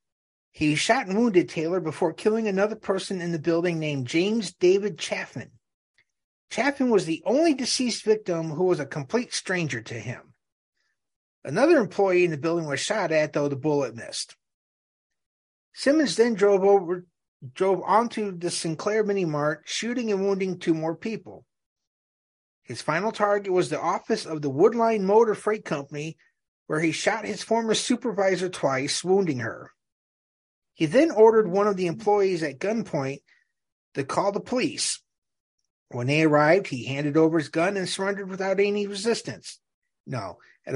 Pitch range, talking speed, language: 160-215 Hz, 155 wpm, English